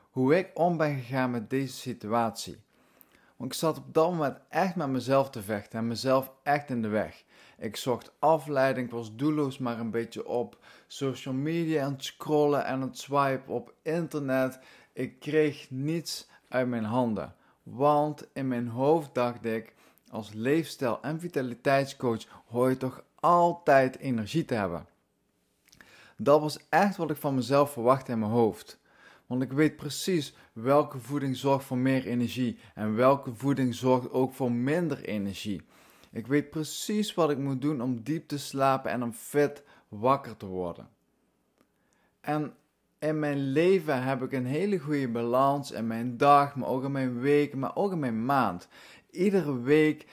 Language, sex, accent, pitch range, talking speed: Dutch, male, Dutch, 120-150 Hz, 165 wpm